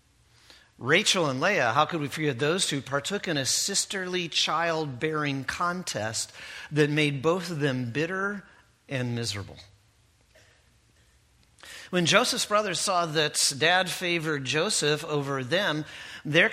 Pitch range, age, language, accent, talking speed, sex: 140-195 Hz, 40-59, English, American, 125 wpm, male